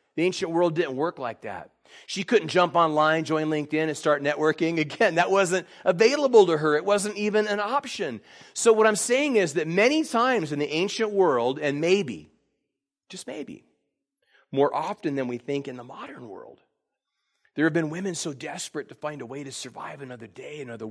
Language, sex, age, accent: English, male, 40-59, American